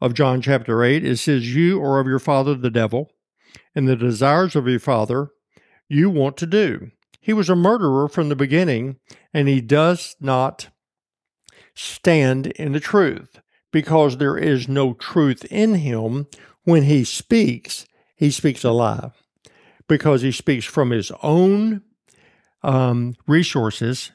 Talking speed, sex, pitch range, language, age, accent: 145 wpm, male, 125-155 Hz, English, 50-69, American